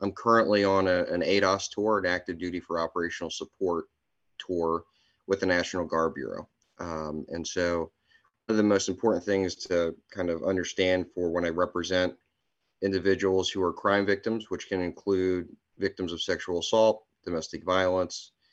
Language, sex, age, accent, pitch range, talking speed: English, male, 30-49, American, 85-100 Hz, 160 wpm